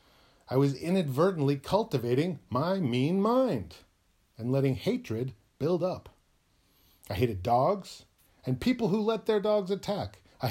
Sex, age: male, 40-59